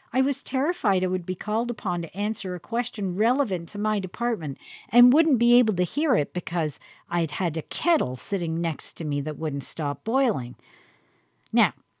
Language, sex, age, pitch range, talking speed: English, female, 50-69, 175-240 Hz, 185 wpm